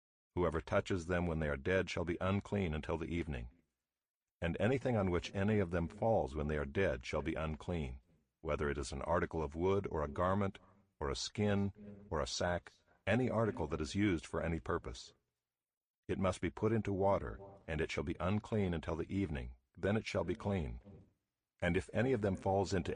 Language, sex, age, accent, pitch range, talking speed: English, male, 50-69, American, 80-100 Hz, 205 wpm